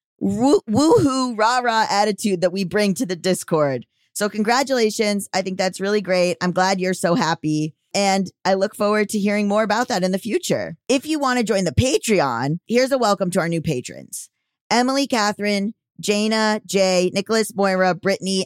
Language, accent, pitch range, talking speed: English, American, 165-210 Hz, 175 wpm